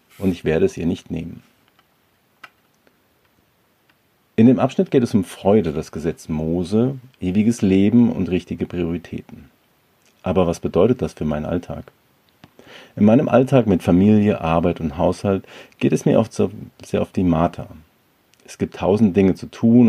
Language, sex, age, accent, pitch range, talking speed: German, male, 40-59, German, 85-115 Hz, 155 wpm